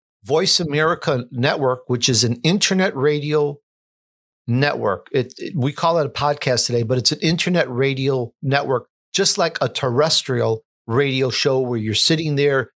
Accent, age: American, 50-69